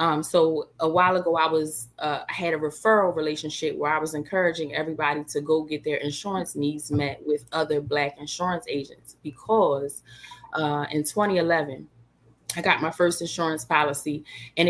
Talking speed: 165 wpm